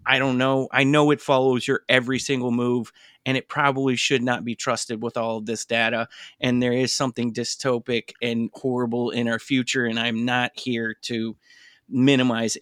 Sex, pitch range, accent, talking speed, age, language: male, 125-180 Hz, American, 185 wpm, 30-49, English